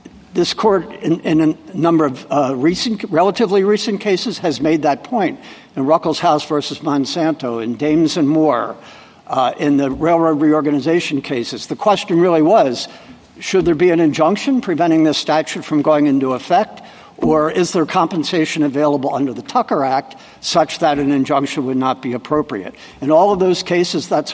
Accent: American